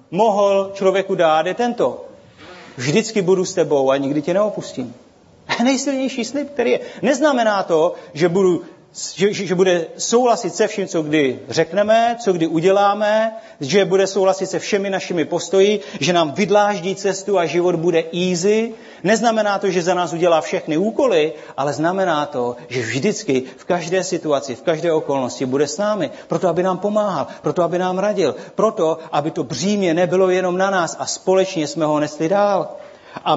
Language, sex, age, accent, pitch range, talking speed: Czech, male, 40-59, native, 150-205 Hz, 170 wpm